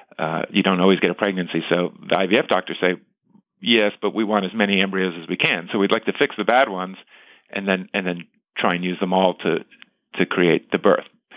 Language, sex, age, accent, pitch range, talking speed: English, male, 50-69, American, 95-115 Hz, 230 wpm